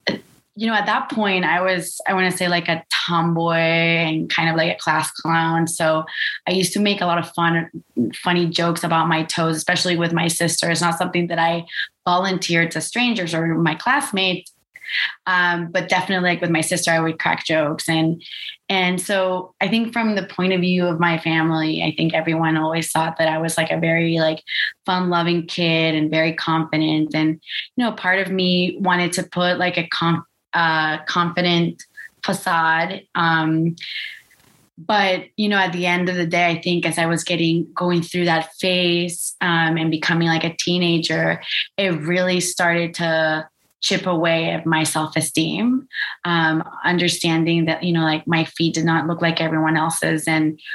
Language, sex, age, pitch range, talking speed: English, female, 20-39, 160-180 Hz, 185 wpm